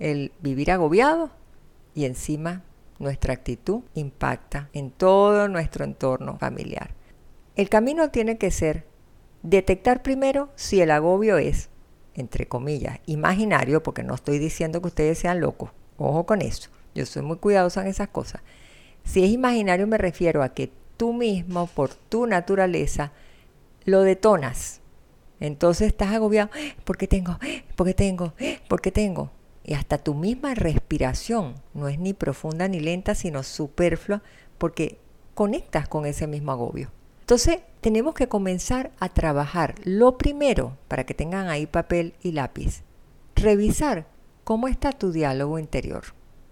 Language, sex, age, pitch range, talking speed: Spanish, female, 50-69, 150-210 Hz, 145 wpm